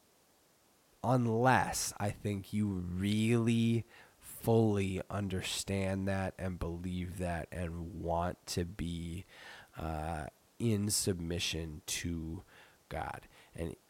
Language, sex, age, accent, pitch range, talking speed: English, male, 20-39, American, 90-110 Hz, 90 wpm